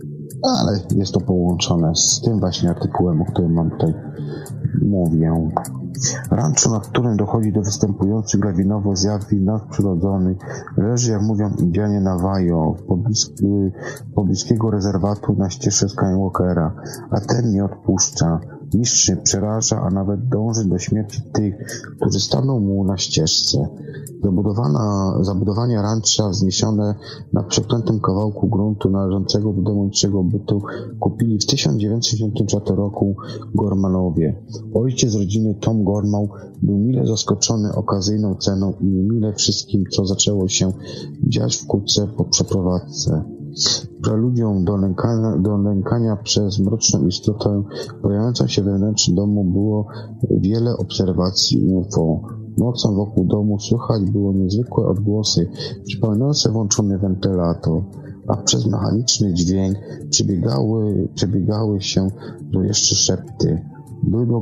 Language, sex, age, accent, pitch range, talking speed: Polish, male, 40-59, native, 95-110 Hz, 115 wpm